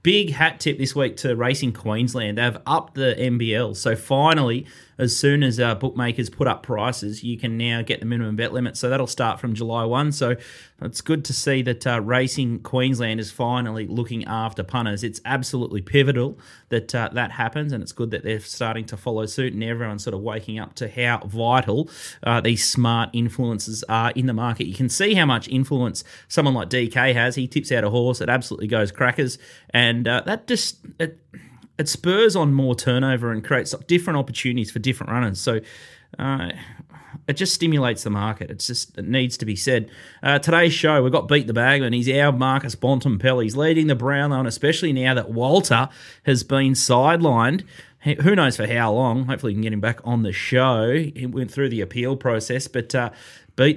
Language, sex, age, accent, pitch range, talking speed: English, male, 30-49, Australian, 115-135 Hz, 200 wpm